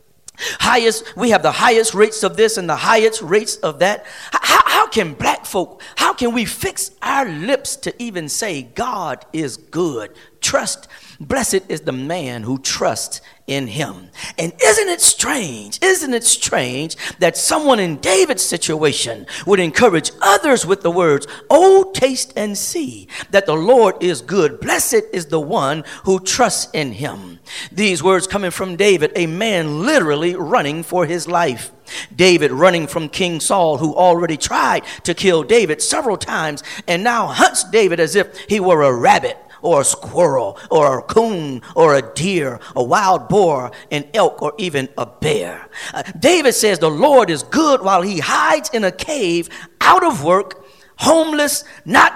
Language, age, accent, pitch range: English, 40-59, American, 175-265 Hz